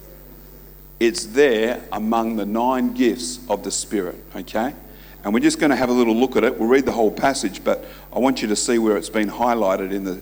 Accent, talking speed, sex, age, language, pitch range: Australian, 225 wpm, male, 50-69, English, 110-130 Hz